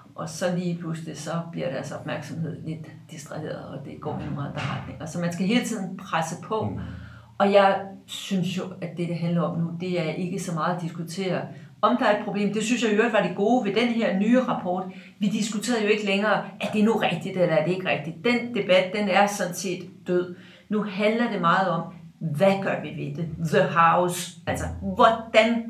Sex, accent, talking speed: female, native, 210 wpm